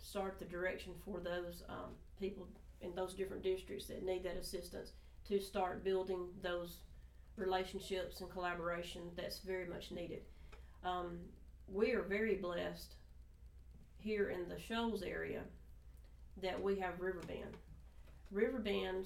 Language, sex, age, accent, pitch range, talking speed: English, female, 40-59, American, 170-190 Hz, 130 wpm